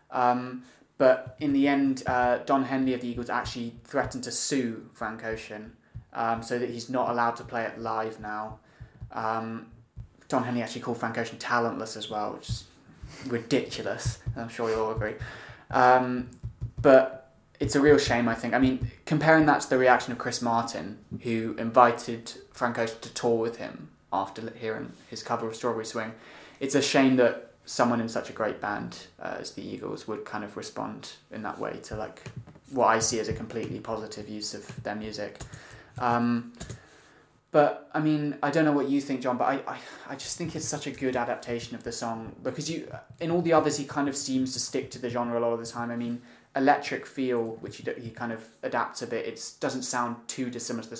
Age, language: 20-39, English